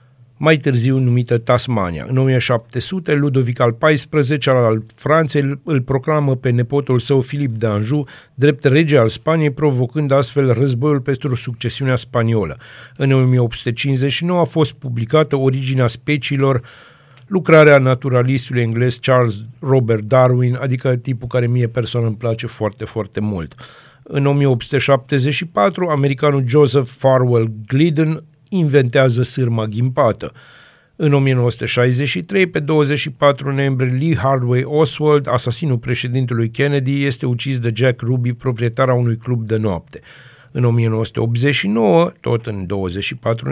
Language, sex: Romanian, male